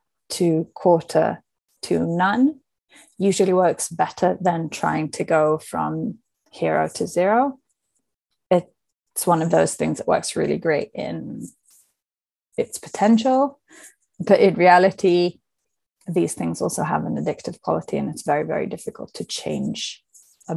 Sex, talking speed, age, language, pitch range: female, 130 wpm, 20-39, English, 170-210 Hz